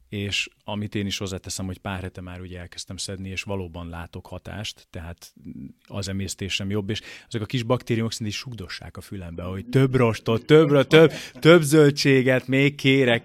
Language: Hungarian